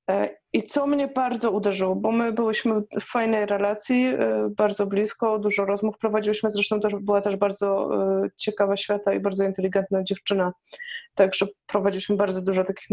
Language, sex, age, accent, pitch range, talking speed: Polish, female, 20-39, native, 200-230 Hz, 155 wpm